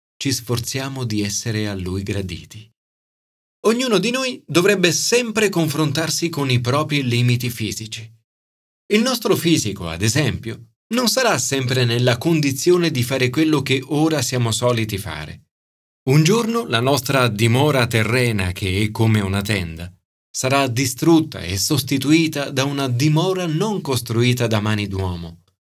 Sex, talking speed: male, 140 wpm